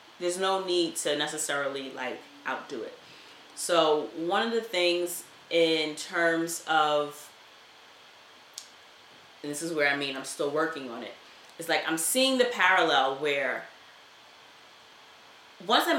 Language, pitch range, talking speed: English, 150-175 Hz, 135 wpm